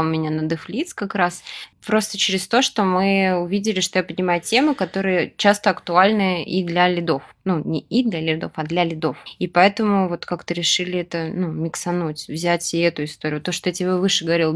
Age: 20-39